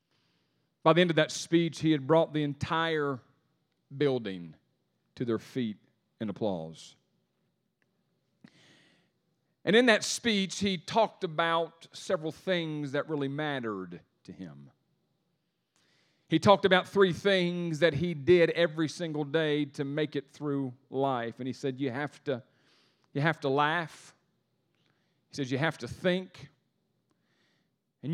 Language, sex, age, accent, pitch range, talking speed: English, male, 40-59, American, 140-180 Hz, 135 wpm